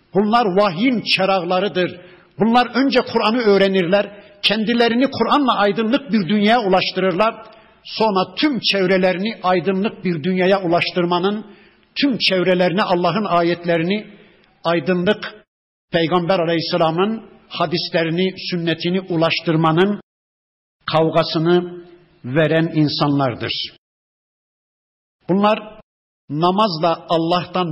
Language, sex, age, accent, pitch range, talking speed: Turkish, male, 60-79, native, 165-205 Hz, 80 wpm